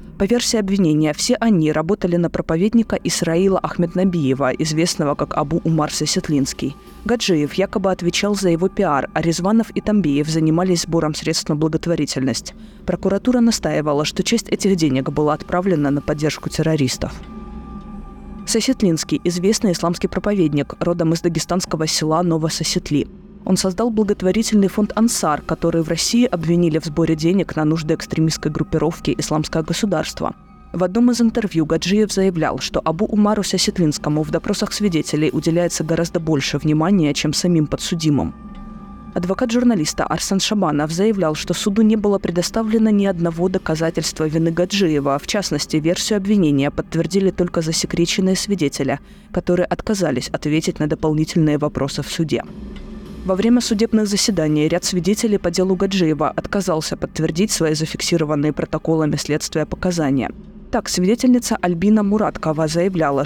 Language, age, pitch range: Russian, 20-39, 155-200 Hz